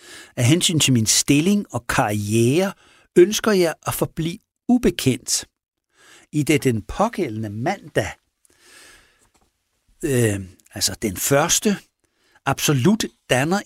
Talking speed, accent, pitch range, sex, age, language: 100 wpm, native, 120-165 Hz, male, 60-79, Danish